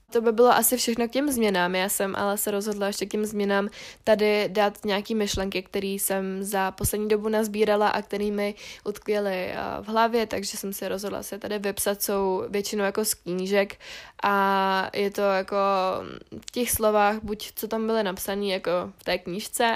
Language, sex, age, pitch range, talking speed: Czech, female, 20-39, 200-220 Hz, 180 wpm